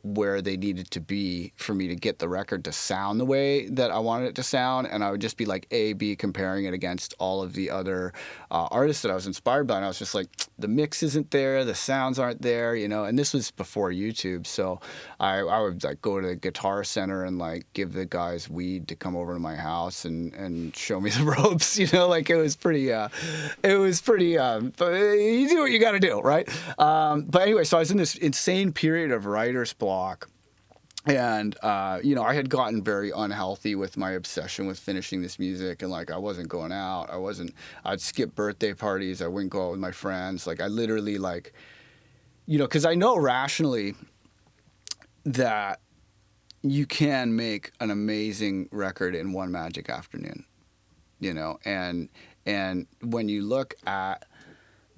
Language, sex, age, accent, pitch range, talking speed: English, male, 30-49, American, 95-140 Hz, 205 wpm